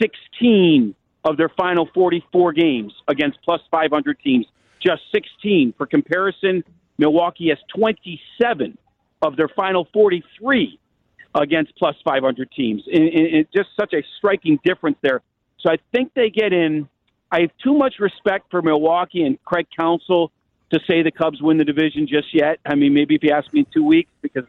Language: English